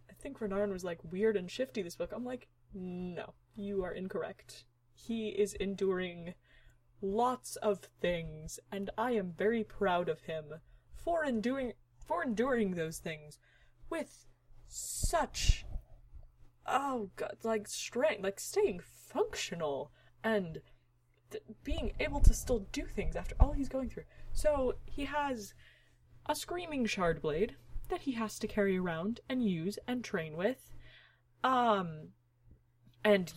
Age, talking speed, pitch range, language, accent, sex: 20-39, 135 wpm, 155-225 Hz, English, American, female